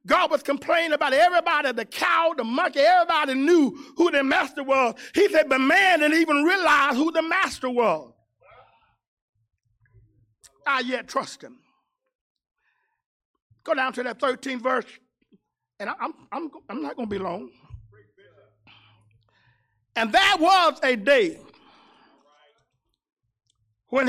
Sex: male